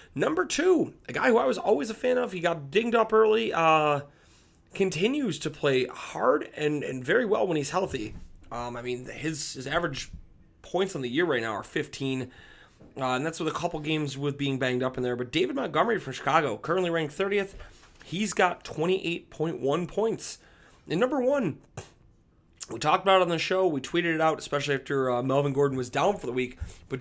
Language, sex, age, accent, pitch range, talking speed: English, male, 30-49, American, 125-170 Hz, 205 wpm